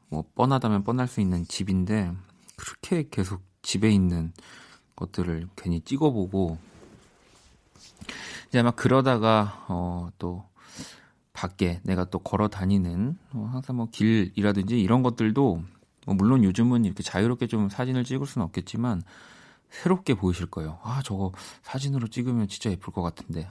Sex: male